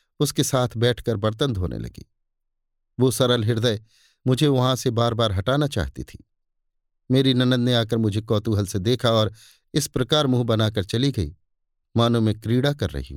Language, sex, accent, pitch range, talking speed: Hindi, male, native, 105-135 Hz, 170 wpm